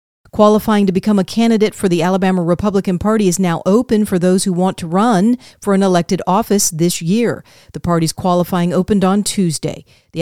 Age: 40-59